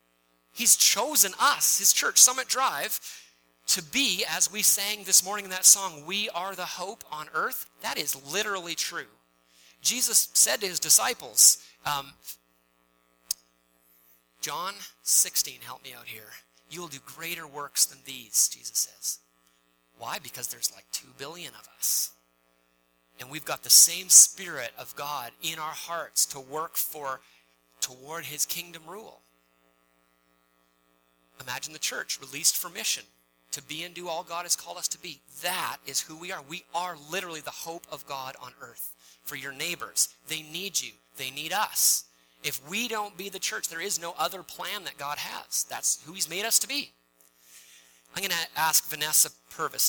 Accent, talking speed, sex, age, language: American, 170 wpm, male, 30-49, English